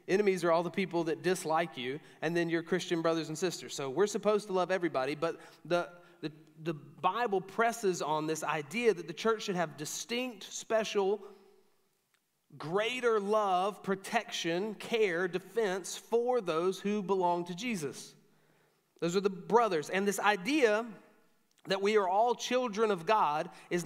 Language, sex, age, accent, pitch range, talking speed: English, male, 30-49, American, 155-205 Hz, 160 wpm